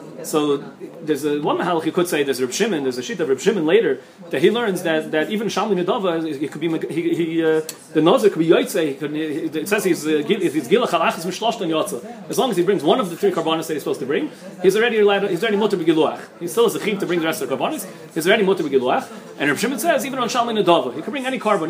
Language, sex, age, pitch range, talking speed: English, male, 30-49, 165-215 Hz, 270 wpm